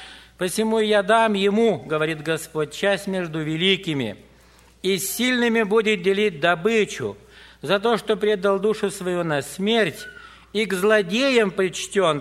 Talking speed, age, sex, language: 130 wpm, 60-79, male, Russian